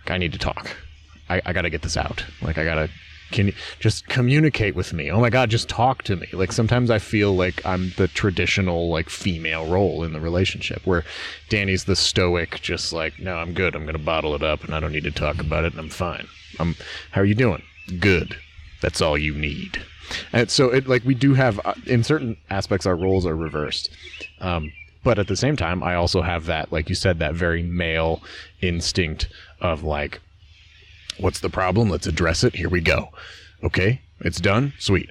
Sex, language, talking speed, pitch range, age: male, English, 205 wpm, 80-100 Hz, 30-49